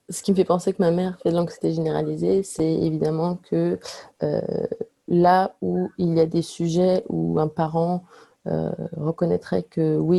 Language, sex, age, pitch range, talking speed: French, female, 30-49, 155-190 Hz, 175 wpm